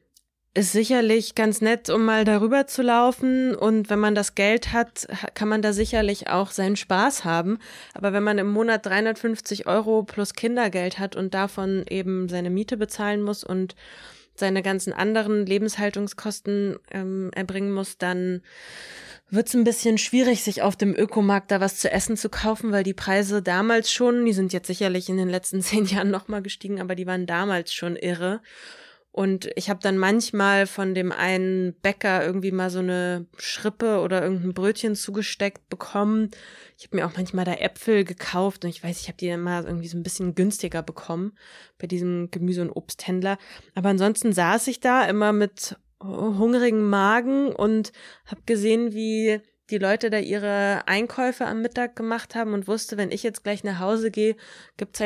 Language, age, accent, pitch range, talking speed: German, 20-39, German, 190-220 Hz, 180 wpm